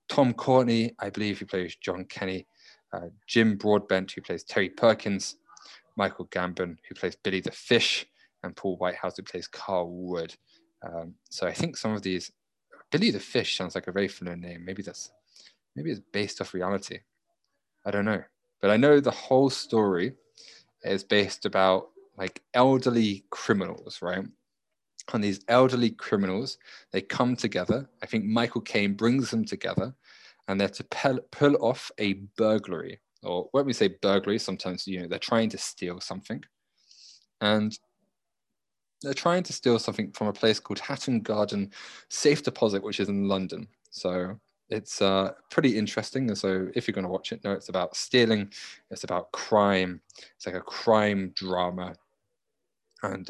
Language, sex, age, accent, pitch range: Japanese, male, 20-39, British, 95-120 Hz